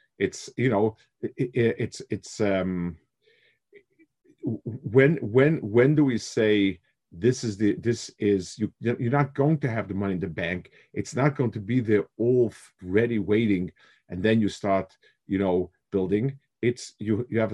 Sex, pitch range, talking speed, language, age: male, 95-125 Hz, 170 wpm, English, 50-69